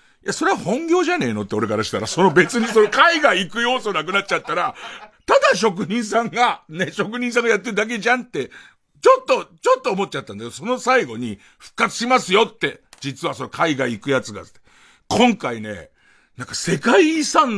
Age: 50-69